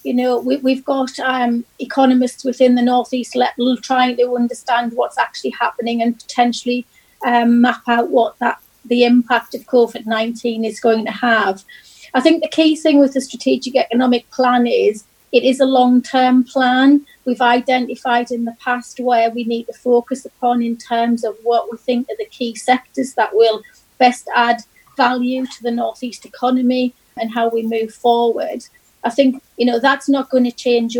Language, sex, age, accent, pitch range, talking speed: English, female, 30-49, British, 235-260 Hz, 180 wpm